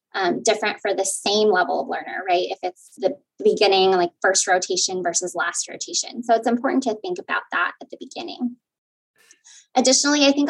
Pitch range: 200-270 Hz